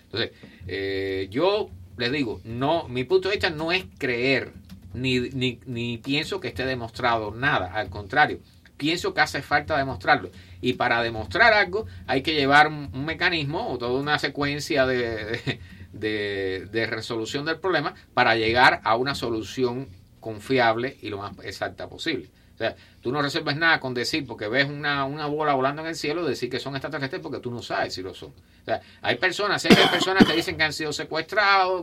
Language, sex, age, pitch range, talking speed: English, male, 50-69, 120-160 Hz, 185 wpm